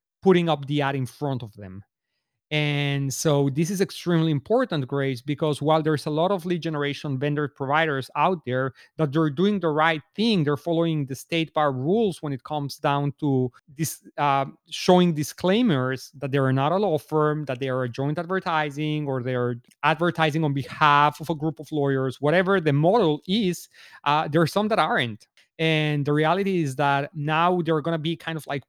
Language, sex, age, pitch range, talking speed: English, male, 30-49, 140-175 Hz, 195 wpm